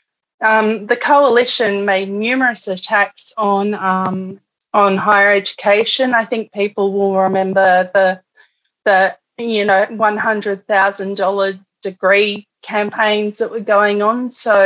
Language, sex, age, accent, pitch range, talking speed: English, female, 30-49, Australian, 190-220 Hz, 125 wpm